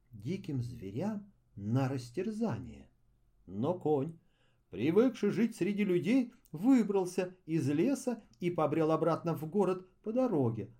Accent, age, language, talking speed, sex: native, 40-59, Russian, 110 wpm, male